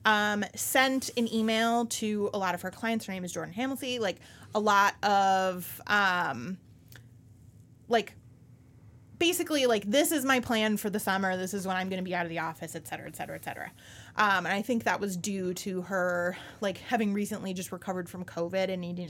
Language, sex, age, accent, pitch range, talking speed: English, female, 30-49, American, 170-225 Hz, 205 wpm